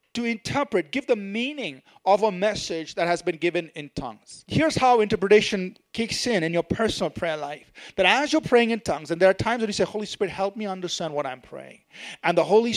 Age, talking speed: 40-59, 225 wpm